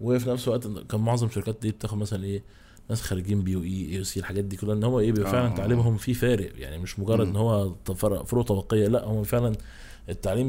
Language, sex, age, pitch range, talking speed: Arabic, male, 20-39, 95-115 Hz, 225 wpm